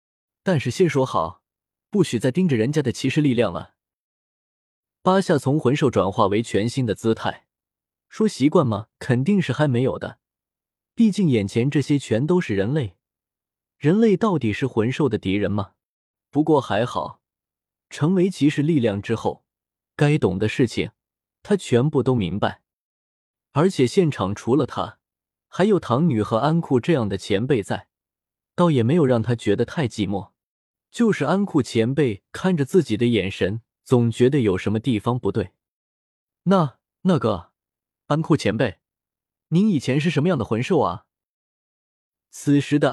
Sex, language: male, Chinese